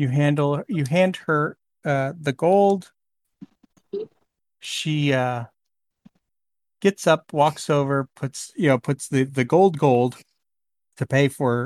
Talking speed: 130 wpm